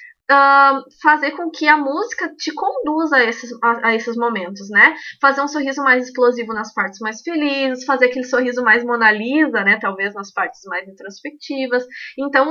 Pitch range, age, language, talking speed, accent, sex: 230-295 Hz, 20-39, Portuguese, 175 wpm, Brazilian, female